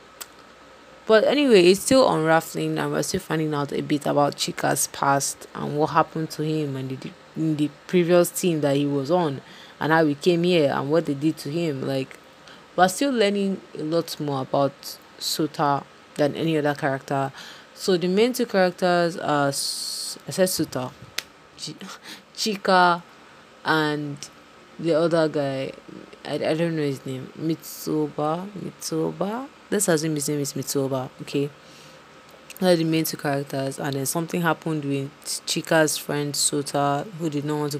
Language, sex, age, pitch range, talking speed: English, female, 20-39, 145-180 Hz, 165 wpm